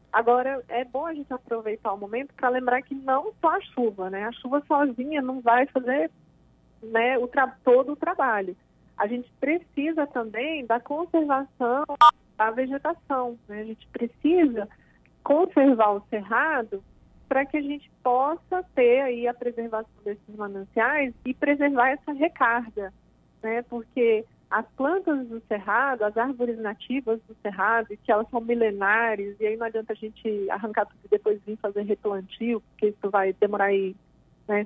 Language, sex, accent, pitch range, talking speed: Portuguese, female, Brazilian, 215-285 Hz, 155 wpm